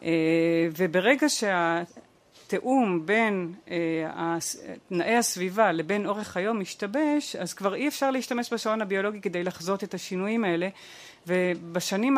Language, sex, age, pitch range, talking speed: Hebrew, female, 40-59, 180-235 Hz, 120 wpm